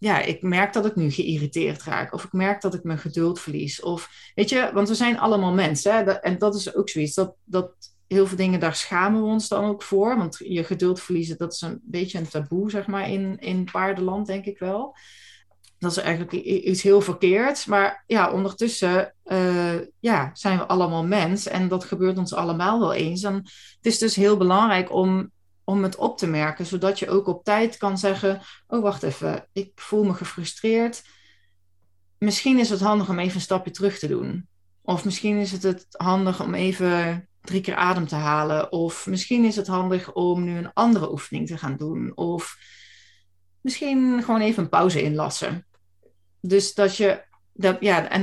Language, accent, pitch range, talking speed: Dutch, Dutch, 170-200 Hz, 190 wpm